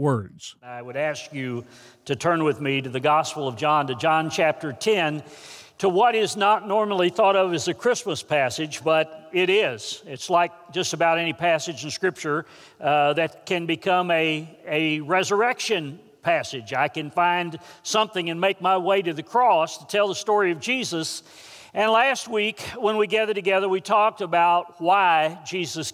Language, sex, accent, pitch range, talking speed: English, male, American, 165-210 Hz, 175 wpm